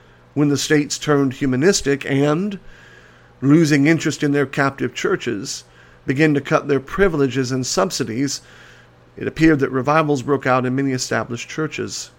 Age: 50-69